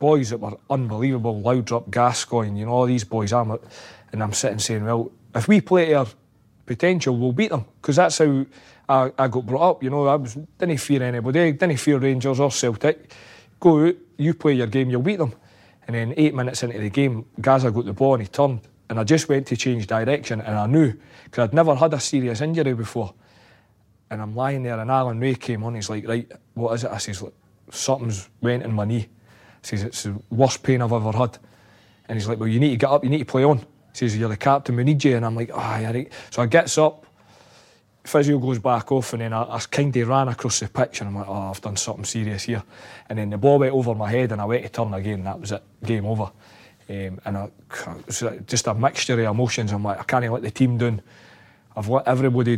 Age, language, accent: 30-49, English, British